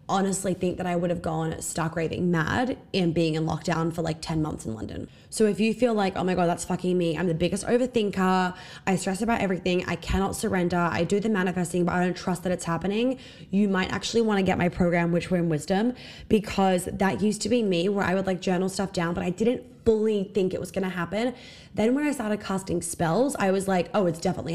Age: 20-39